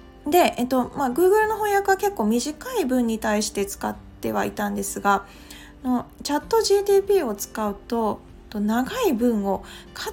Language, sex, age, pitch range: Japanese, female, 20-39, 210-335 Hz